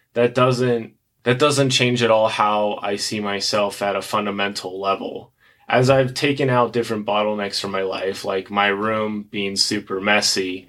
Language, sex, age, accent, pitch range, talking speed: English, male, 20-39, American, 100-115 Hz, 170 wpm